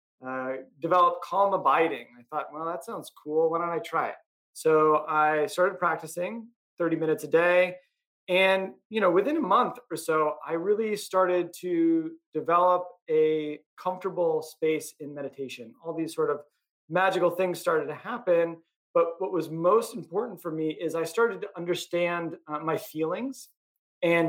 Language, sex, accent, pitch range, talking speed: English, male, American, 155-190 Hz, 165 wpm